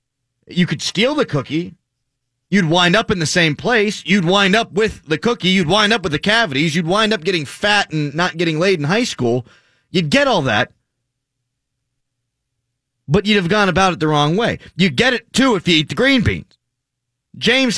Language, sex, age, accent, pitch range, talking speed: English, male, 30-49, American, 120-185 Hz, 205 wpm